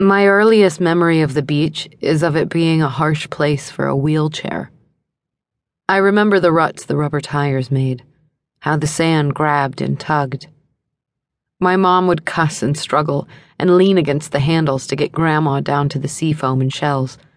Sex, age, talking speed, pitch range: female, 30-49, 175 wpm, 140-165 Hz